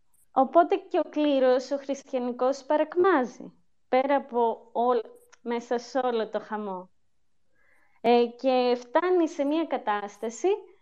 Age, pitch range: 20-39, 230-300 Hz